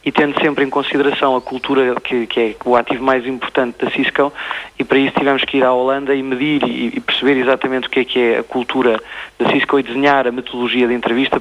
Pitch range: 120-135 Hz